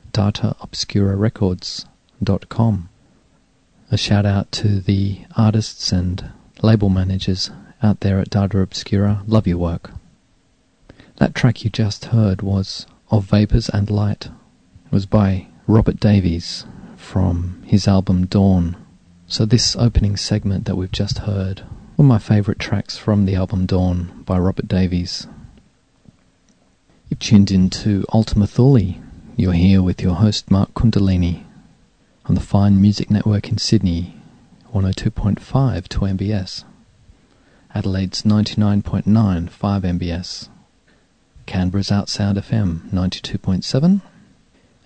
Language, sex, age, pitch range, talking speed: English, male, 40-59, 95-110 Hz, 120 wpm